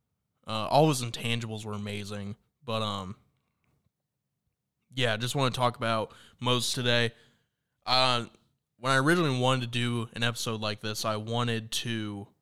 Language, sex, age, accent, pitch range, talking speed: English, male, 20-39, American, 110-130 Hz, 145 wpm